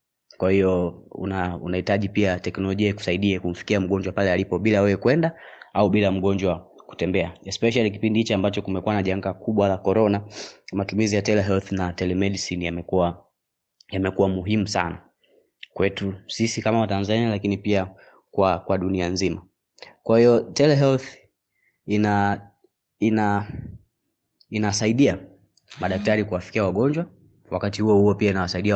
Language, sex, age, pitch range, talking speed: Swahili, male, 20-39, 95-105 Hz, 130 wpm